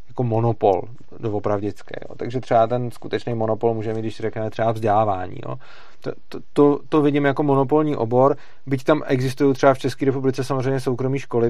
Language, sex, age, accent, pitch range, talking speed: Czech, male, 30-49, native, 110-130 Hz, 170 wpm